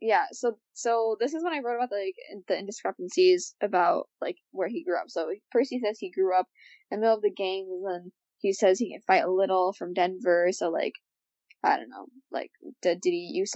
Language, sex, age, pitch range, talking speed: English, female, 10-29, 195-275 Hz, 240 wpm